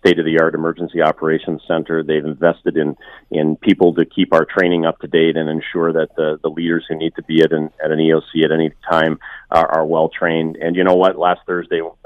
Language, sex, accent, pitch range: English, male, American, 75-85 Hz